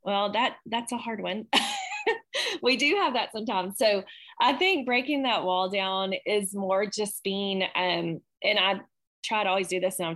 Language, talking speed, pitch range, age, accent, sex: English, 190 wpm, 175-215 Hz, 20-39, American, female